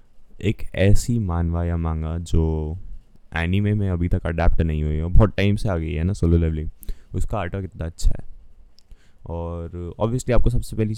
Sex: male